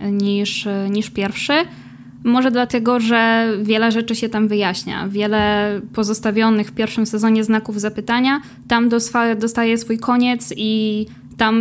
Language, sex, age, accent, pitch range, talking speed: Polish, female, 10-29, native, 205-230 Hz, 125 wpm